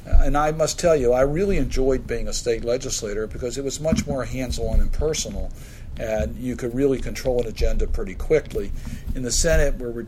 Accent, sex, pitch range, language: American, male, 115-135 Hz, English